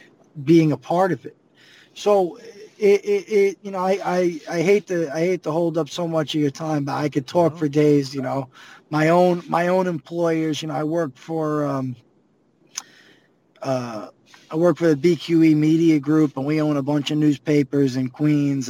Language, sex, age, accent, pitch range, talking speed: English, male, 20-39, American, 135-165 Hz, 200 wpm